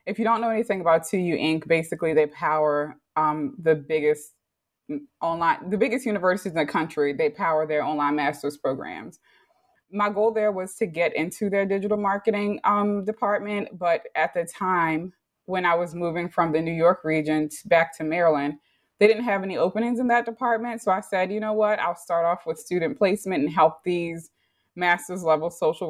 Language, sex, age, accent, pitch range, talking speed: English, female, 20-39, American, 160-205 Hz, 190 wpm